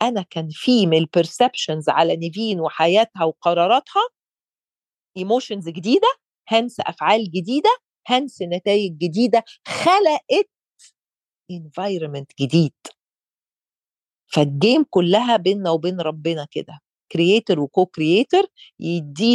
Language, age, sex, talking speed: Arabic, 40-59, female, 95 wpm